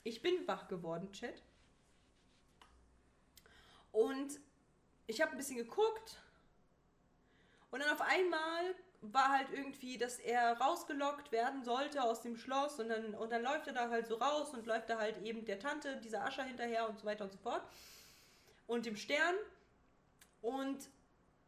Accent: German